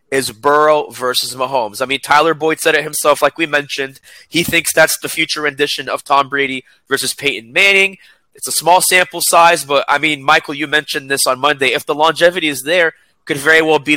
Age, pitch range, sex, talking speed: 20-39, 130-165 Hz, male, 215 wpm